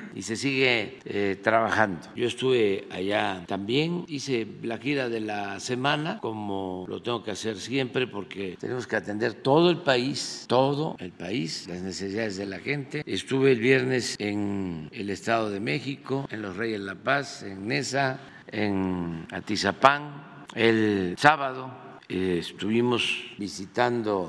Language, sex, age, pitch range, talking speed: Spanish, male, 50-69, 95-125 Hz, 145 wpm